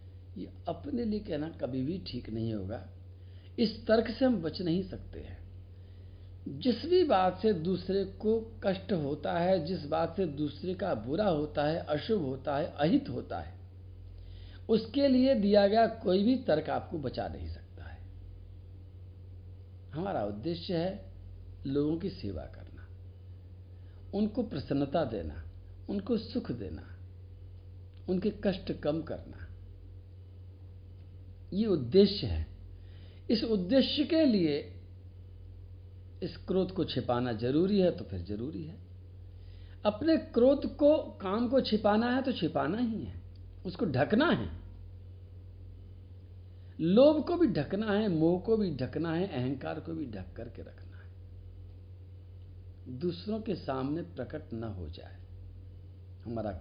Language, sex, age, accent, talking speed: Hindi, male, 60-79, native, 130 wpm